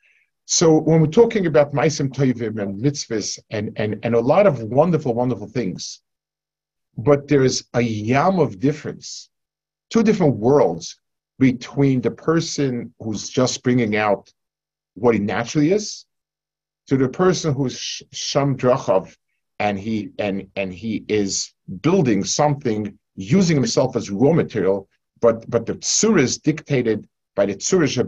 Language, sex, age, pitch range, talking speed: English, male, 50-69, 115-150 Hz, 135 wpm